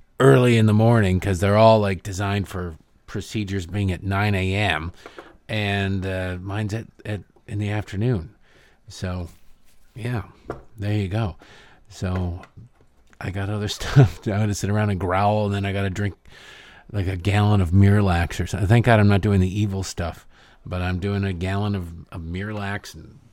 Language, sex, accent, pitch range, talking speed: English, male, American, 95-120 Hz, 180 wpm